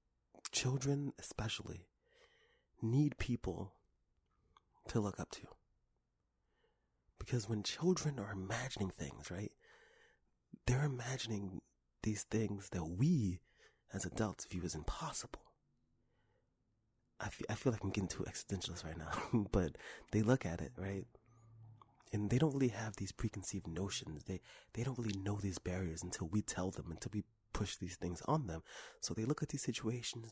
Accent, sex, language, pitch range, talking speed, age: American, male, English, 90-120 Hz, 150 wpm, 30-49